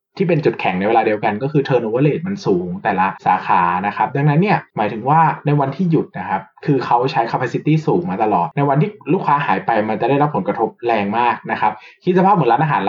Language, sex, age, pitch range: Thai, male, 20-39, 120-170 Hz